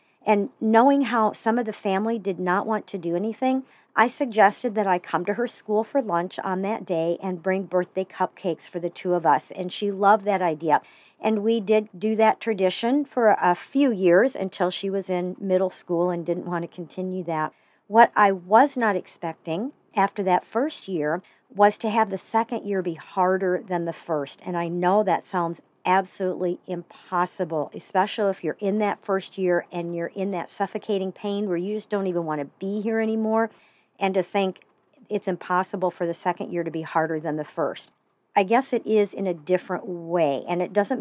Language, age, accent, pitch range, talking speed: English, 50-69, American, 180-220 Hz, 200 wpm